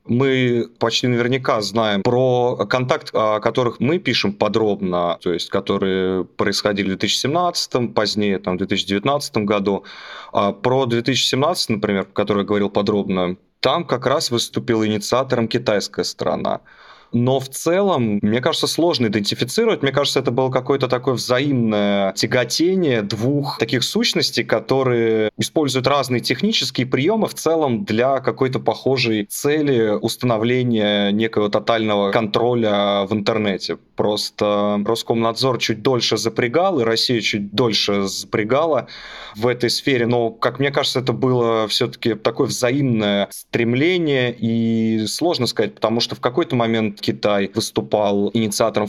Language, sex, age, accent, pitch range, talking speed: Russian, male, 30-49, native, 105-125 Hz, 130 wpm